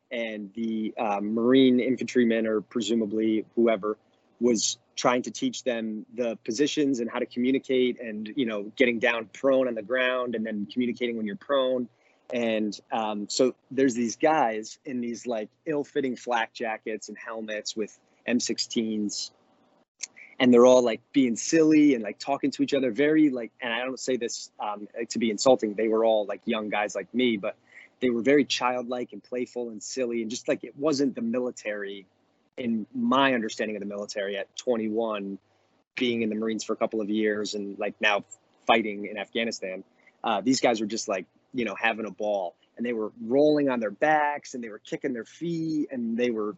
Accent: American